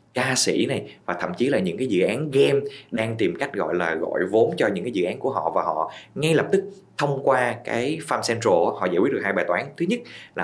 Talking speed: 265 wpm